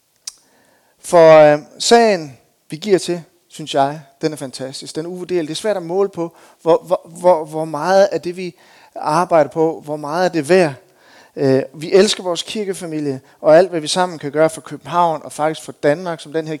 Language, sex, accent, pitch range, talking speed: Danish, male, native, 135-175 Hz, 195 wpm